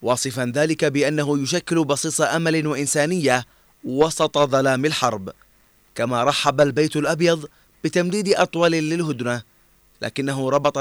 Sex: male